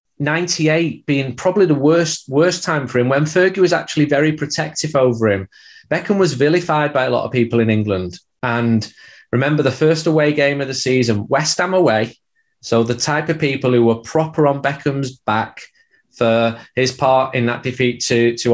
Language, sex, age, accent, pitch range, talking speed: English, male, 20-39, British, 115-155 Hz, 190 wpm